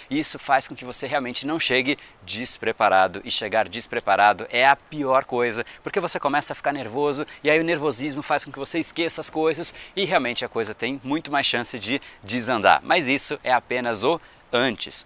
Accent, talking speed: Brazilian, 195 wpm